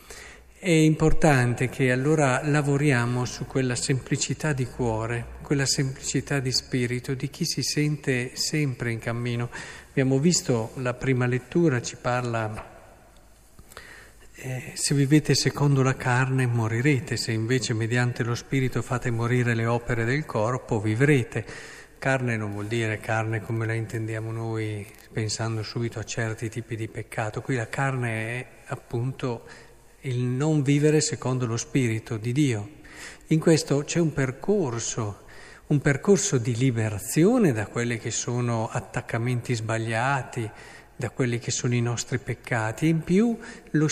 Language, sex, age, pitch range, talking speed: Italian, male, 50-69, 120-150 Hz, 140 wpm